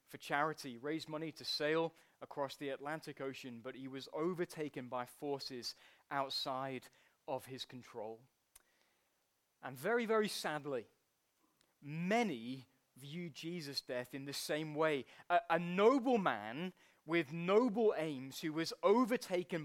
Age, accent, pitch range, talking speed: 20-39, British, 150-210 Hz, 130 wpm